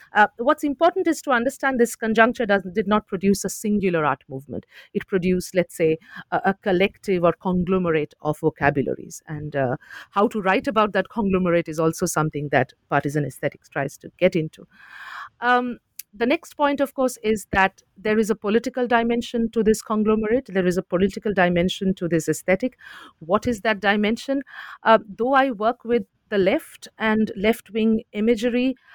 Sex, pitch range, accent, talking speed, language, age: female, 165-225 Hz, Indian, 170 wpm, English, 50-69